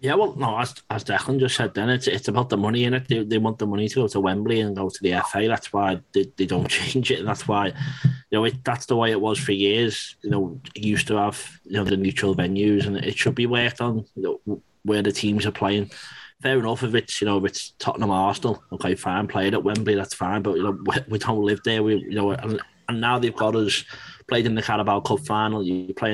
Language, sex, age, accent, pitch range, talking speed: English, male, 20-39, British, 100-110 Hz, 270 wpm